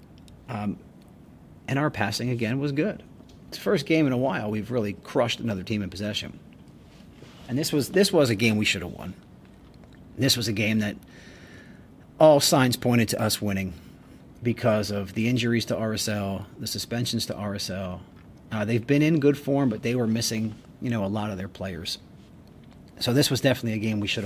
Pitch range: 100-130 Hz